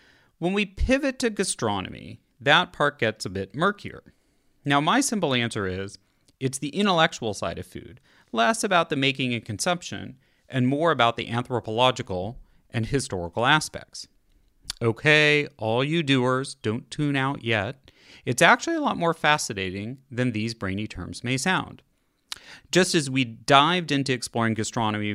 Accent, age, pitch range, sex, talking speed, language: American, 30-49, 105-145 Hz, male, 150 wpm, English